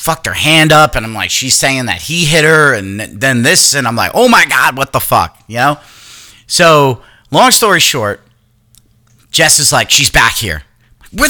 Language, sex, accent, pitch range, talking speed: English, male, American, 105-150 Hz, 200 wpm